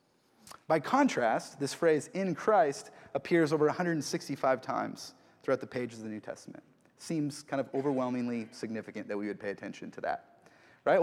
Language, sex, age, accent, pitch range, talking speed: English, male, 30-49, American, 130-165 Hz, 165 wpm